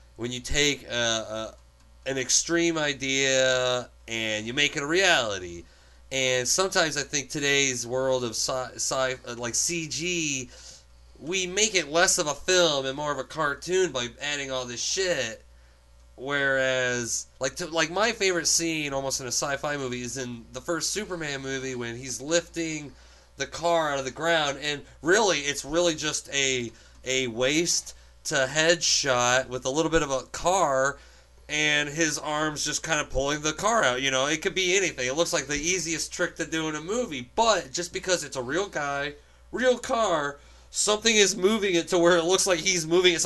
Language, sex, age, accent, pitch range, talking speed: English, male, 30-49, American, 125-170 Hz, 185 wpm